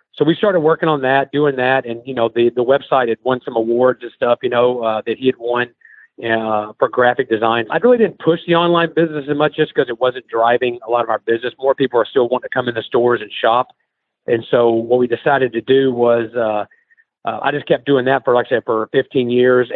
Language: English